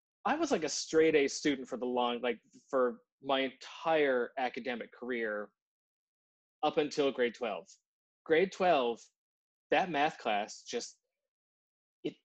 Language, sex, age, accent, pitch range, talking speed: English, male, 20-39, American, 125-185 Hz, 125 wpm